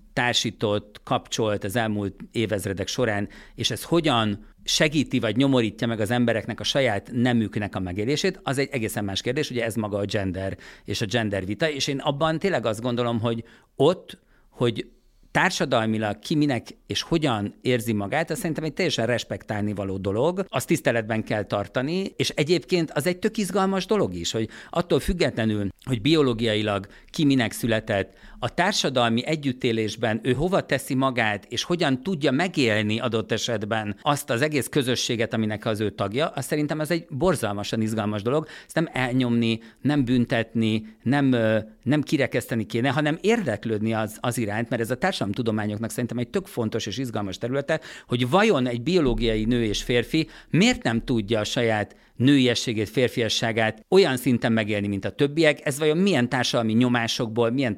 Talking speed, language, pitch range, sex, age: 165 wpm, Hungarian, 110-145 Hz, male, 50-69